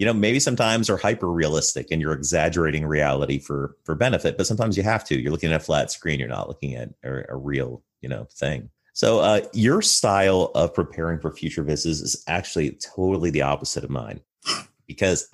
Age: 30-49